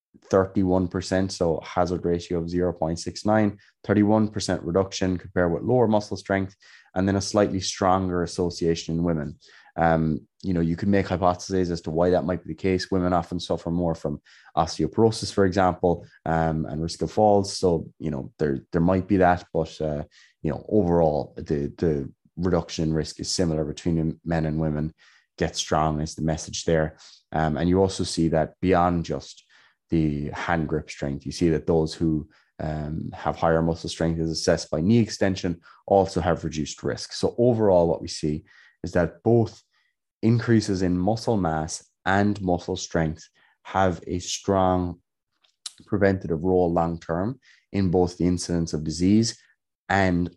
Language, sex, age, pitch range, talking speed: English, male, 20-39, 80-95 Hz, 165 wpm